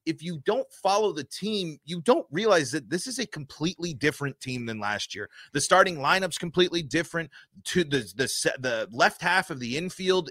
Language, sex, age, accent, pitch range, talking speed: English, male, 30-49, American, 145-180 Hz, 190 wpm